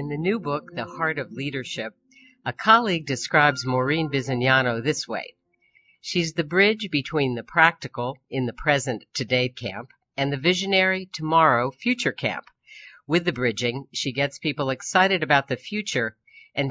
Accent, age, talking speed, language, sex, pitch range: American, 50-69, 155 wpm, English, female, 125-170 Hz